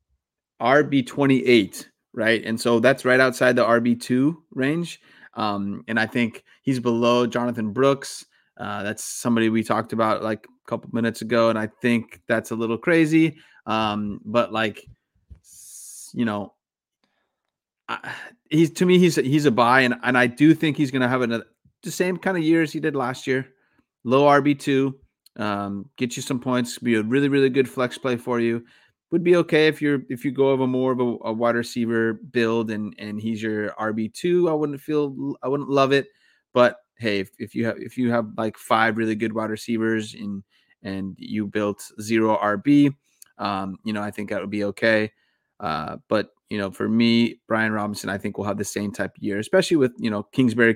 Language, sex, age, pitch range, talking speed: English, male, 30-49, 110-135 Hz, 200 wpm